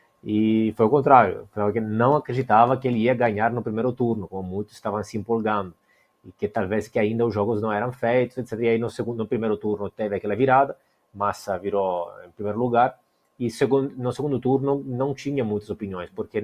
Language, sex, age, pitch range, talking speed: Portuguese, male, 30-49, 105-125 Hz, 200 wpm